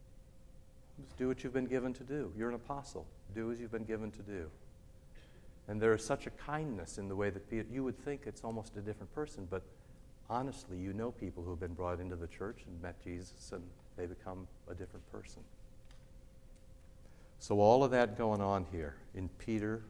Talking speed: 195 wpm